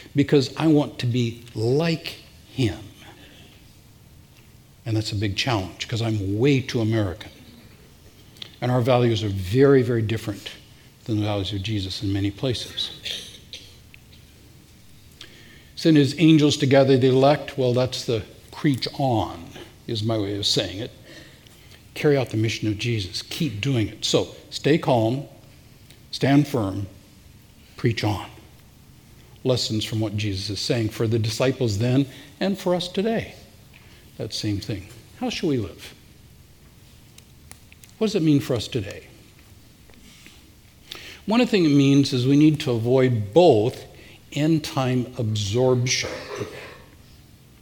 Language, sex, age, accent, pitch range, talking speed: English, male, 60-79, American, 110-140 Hz, 135 wpm